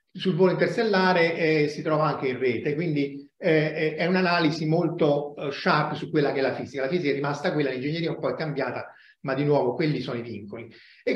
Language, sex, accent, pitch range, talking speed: Italian, male, native, 150-190 Hz, 215 wpm